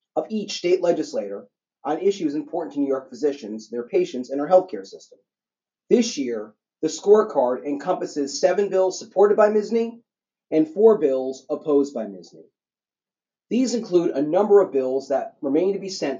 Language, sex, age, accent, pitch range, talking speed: English, male, 30-49, American, 140-200 Hz, 165 wpm